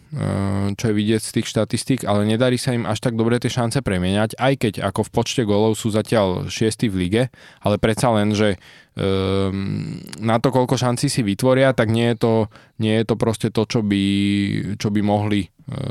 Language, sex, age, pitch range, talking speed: Slovak, male, 20-39, 100-115 Hz, 190 wpm